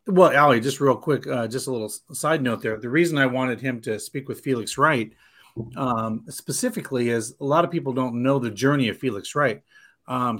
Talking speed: 215 wpm